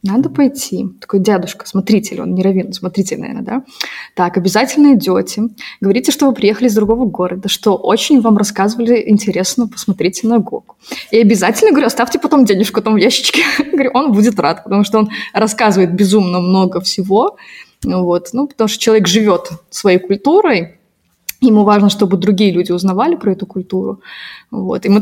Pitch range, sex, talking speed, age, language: 195-240 Hz, female, 165 wpm, 20-39, Russian